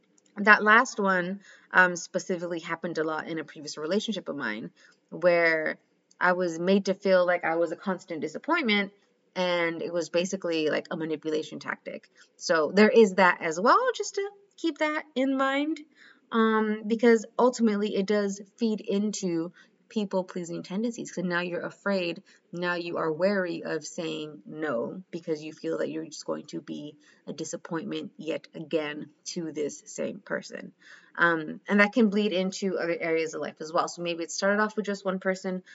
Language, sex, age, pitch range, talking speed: English, female, 20-39, 165-210 Hz, 175 wpm